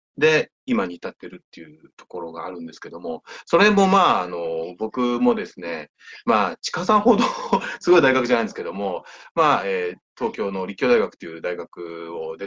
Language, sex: Japanese, male